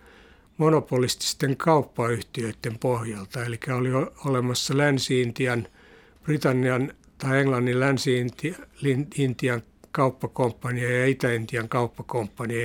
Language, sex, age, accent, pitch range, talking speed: Finnish, male, 60-79, native, 120-140 Hz, 70 wpm